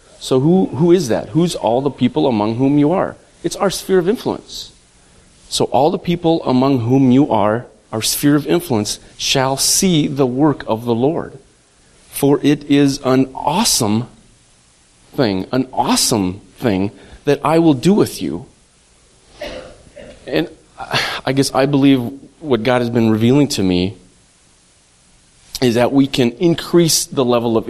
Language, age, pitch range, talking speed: English, 30-49, 115-145 Hz, 155 wpm